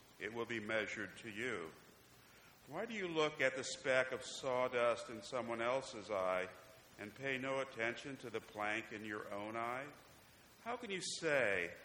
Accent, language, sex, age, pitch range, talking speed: American, English, male, 50-69, 115-135 Hz, 170 wpm